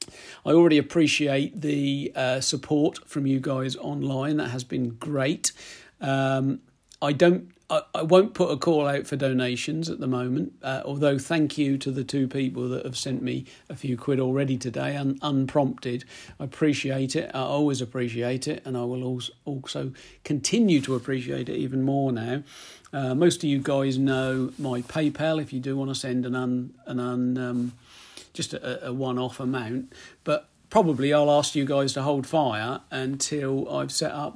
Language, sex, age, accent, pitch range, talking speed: English, male, 50-69, British, 130-150 Hz, 185 wpm